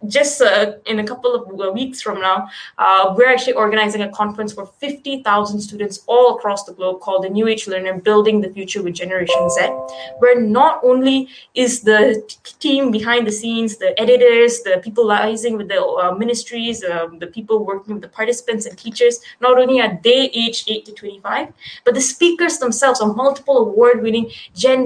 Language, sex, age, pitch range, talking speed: English, female, 20-39, 200-250 Hz, 185 wpm